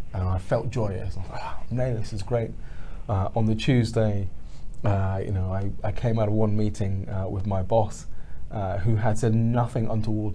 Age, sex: 20-39, male